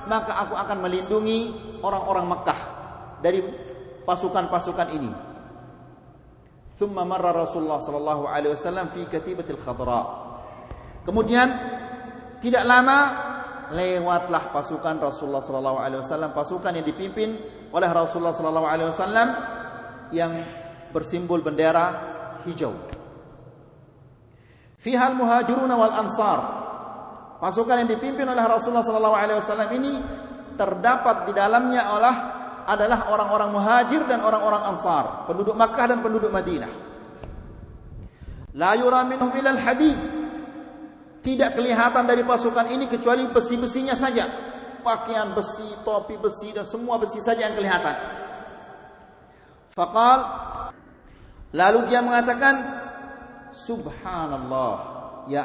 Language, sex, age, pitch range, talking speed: Malay, male, 40-59, 175-245 Hz, 100 wpm